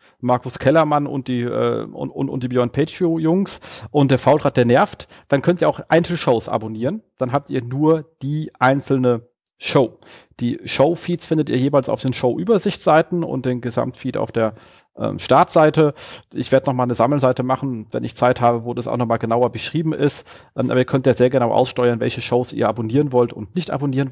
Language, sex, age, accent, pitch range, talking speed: German, male, 40-59, German, 115-145 Hz, 195 wpm